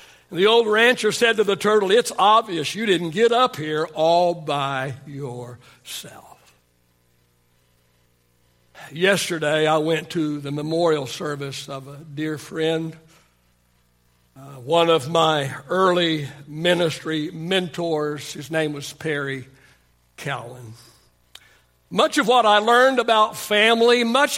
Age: 60-79